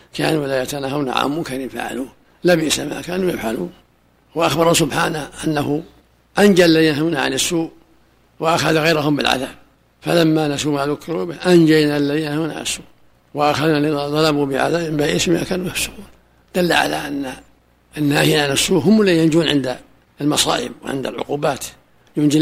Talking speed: 150 wpm